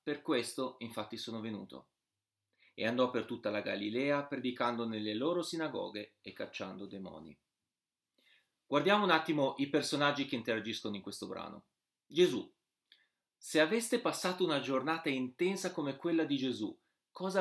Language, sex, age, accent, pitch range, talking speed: Italian, male, 30-49, native, 115-160 Hz, 140 wpm